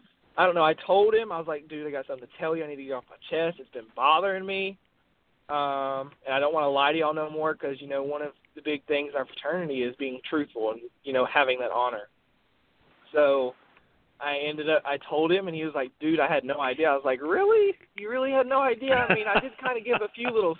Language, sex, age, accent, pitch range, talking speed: English, male, 20-39, American, 140-180 Hz, 275 wpm